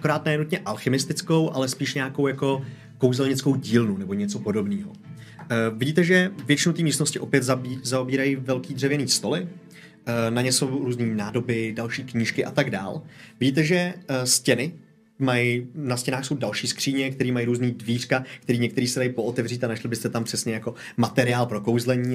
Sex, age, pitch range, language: male, 30-49, 120-160 Hz, Czech